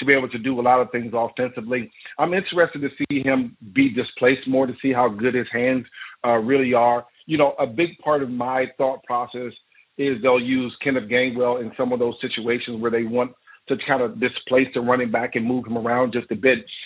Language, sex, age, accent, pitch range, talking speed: English, male, 50-69, American, 125-145 Hz, 225 wpm